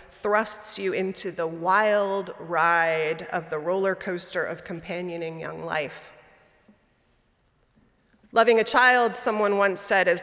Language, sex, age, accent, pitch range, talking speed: English, female, 30-49, American, 175-215 Hz, 125 wpm